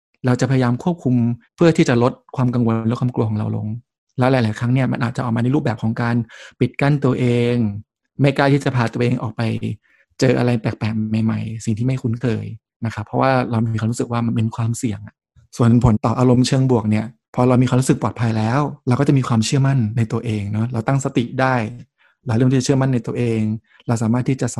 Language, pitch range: Thai, 115-130 Hz